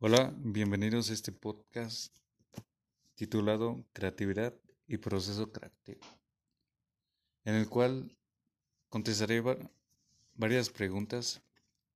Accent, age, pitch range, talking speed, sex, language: Mexican, 30-49, 105-120 Hz, 80 wpm, male, Spanish